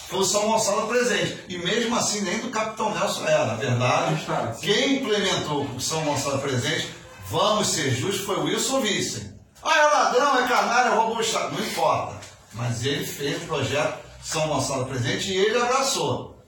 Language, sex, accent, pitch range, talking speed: Portuguese, male, Brazilian, 135-195 Hz, 180 wpm